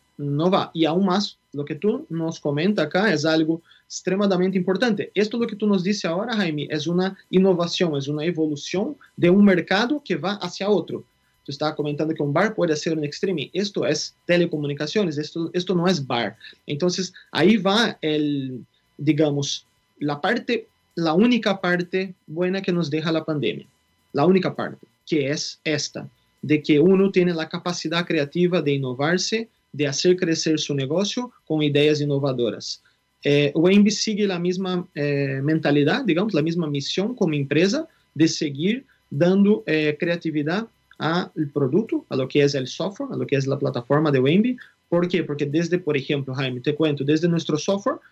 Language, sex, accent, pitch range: Spanish, male, Brazilian, 150-190 Hz